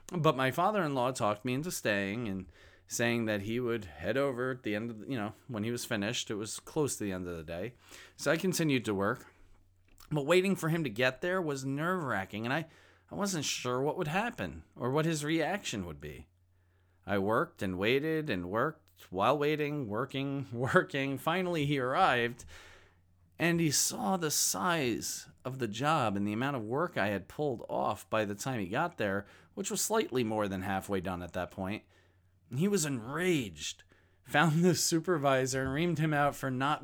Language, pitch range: English, 100-150 Hz